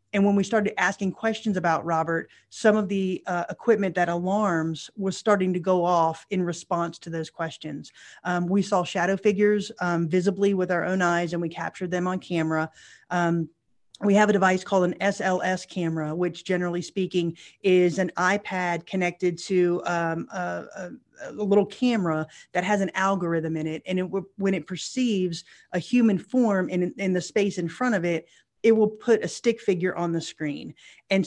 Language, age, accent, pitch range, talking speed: English, 30-49, American, 170-200 Hz, 185 wpm